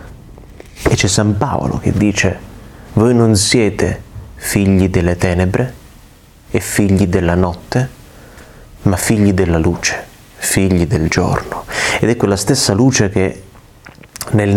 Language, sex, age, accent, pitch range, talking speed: Italian, male, 30-49, native, 90-115 Hz, 115 wpm